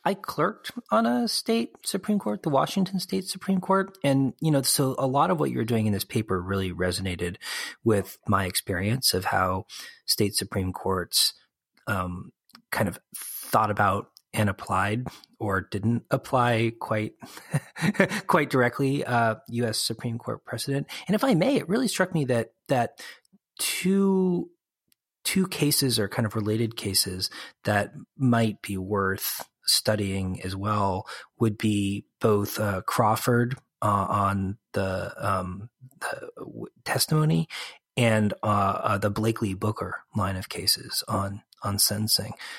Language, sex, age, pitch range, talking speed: English, male, 30-49, 100-135 Hz, 140 wpm